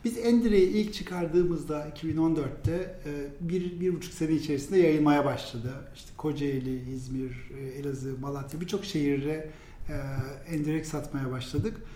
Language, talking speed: Turkish, 100 wpm